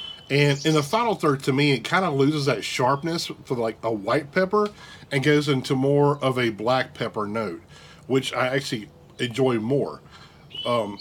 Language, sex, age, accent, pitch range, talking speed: English, male, 40-59, American, 120-145 Hz, 180 wpm